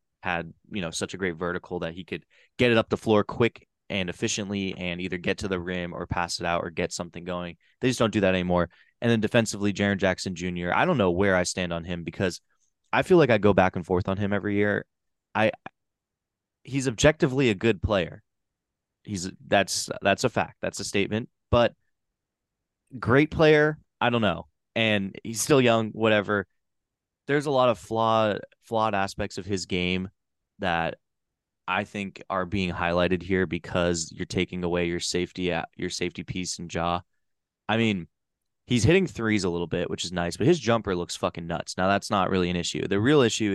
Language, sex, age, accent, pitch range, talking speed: English, male, 20-39, American, 90-115 Hz, 200 wpm